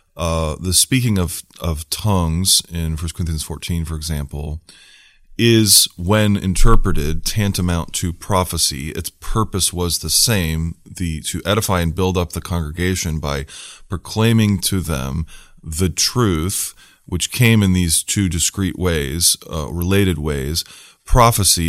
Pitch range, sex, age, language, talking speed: 80-95 Hz, male, 30-49, English, 135 wpm